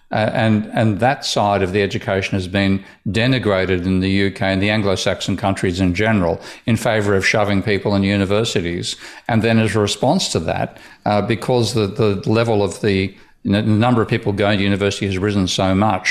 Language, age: English, 50-69